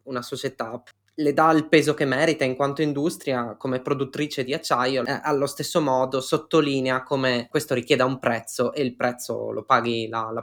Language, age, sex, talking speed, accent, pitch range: Italian, 20-39, male, 185 wpm, native, 125-155 Hz